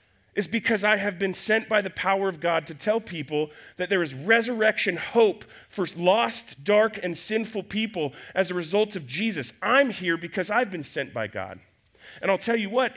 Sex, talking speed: male, 200 wpm